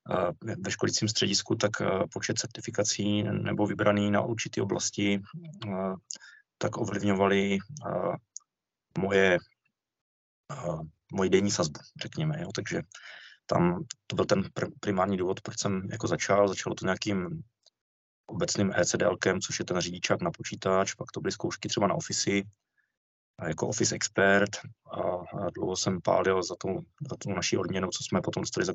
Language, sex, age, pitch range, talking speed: Czech, male, 20-39, 95-105 Hz, 135 wpm